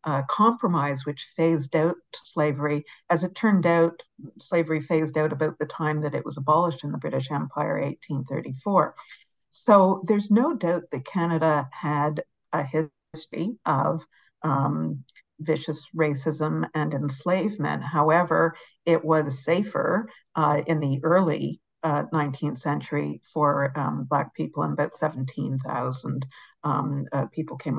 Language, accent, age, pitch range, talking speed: English, American, 50-69, 140-165 Hz, 135 wpm